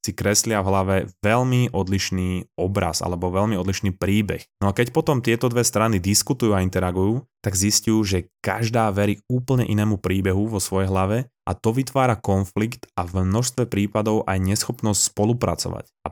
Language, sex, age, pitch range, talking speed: Slovak, male, 20-39, 95-110 Hz, 165 wpm